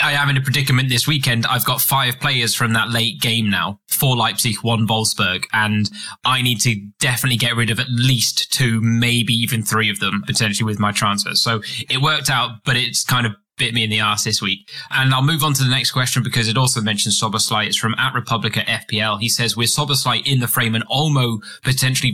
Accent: British